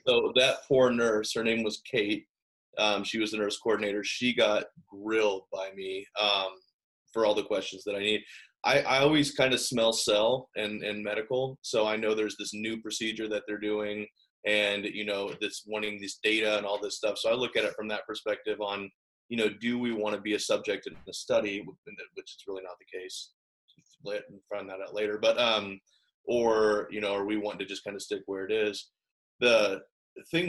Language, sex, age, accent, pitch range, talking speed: English, male, 20-39, American, 100-120 Hz, 215 wpm